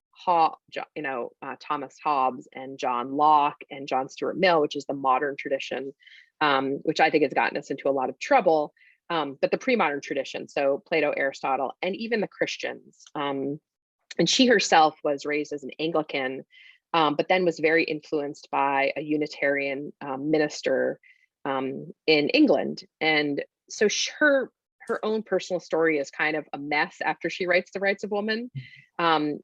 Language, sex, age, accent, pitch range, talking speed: English, female, 30-49, American, 140-185 Hz, 170 wpm